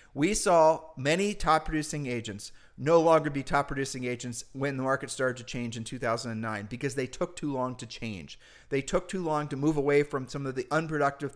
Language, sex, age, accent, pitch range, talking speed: English, male, 40-59, American, 130-160 Hz, 205 wpm